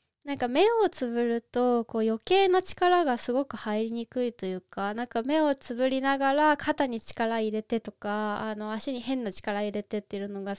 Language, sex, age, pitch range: Japanese, female, 20-39, 210-280 Hz